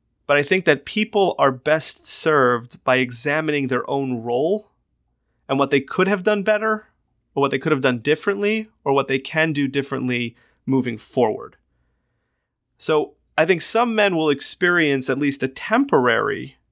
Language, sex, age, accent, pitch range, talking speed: English, male, 30-49, American, 130-155 Hz, 165 wpm